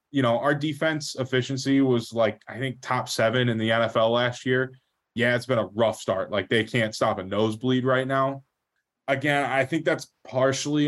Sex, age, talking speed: male, 20-39, 195 wpm